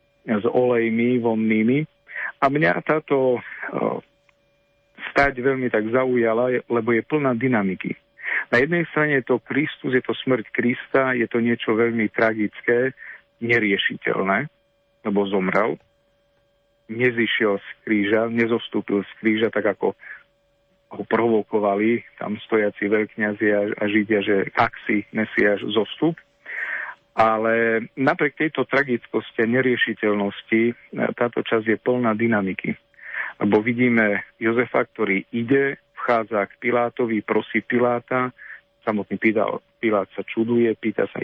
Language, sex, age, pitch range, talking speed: Slovak, male, 50-69, 110-125 Hz, 115 wpm